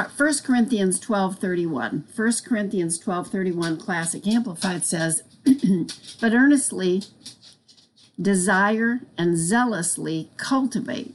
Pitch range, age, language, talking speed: 175-230 Hz, 50-69, English, 90 wpm